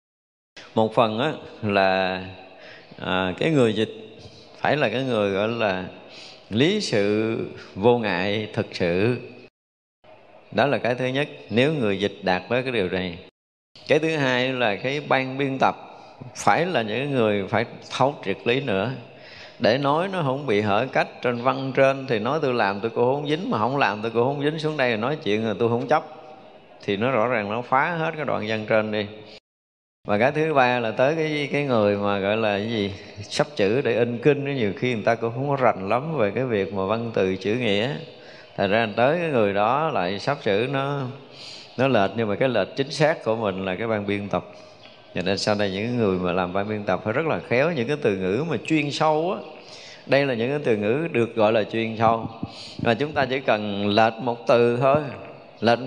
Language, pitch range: Vietnamese, 100-135 Hz